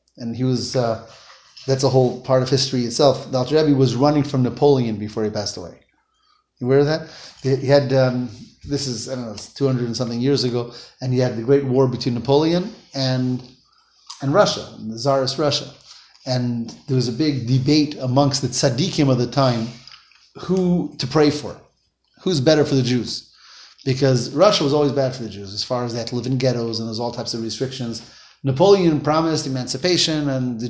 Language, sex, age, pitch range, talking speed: English, male, 30-49, 125-160 Hz, 200 wpm